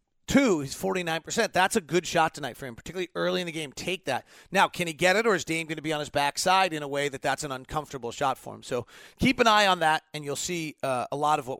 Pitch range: 155-190 Hz